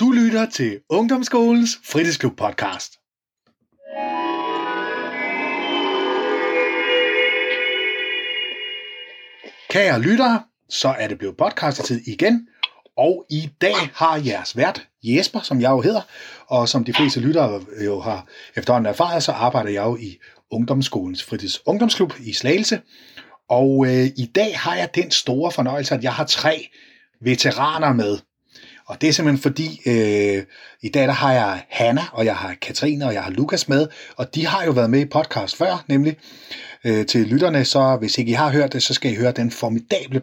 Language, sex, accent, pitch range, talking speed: Danish, male, native, 115-155 Hz, 150 wpm